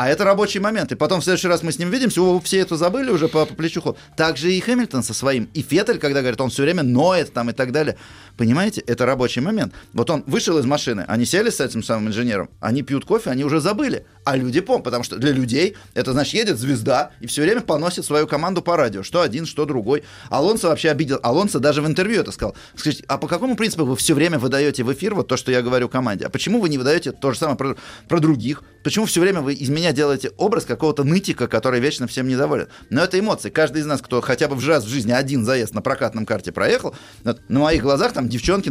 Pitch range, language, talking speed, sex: 125-170 Hz, Russian, 245 wpm, male